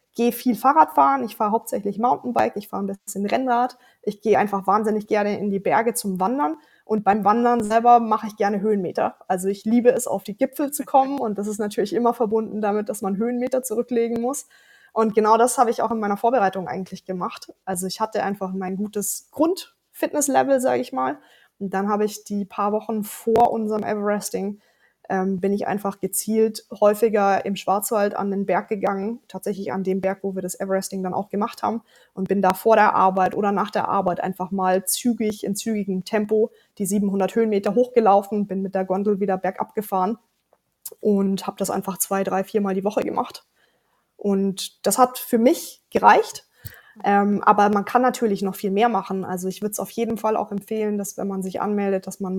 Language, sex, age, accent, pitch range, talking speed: German, female, 20-39, German, 195-230 Hz, 200 wpm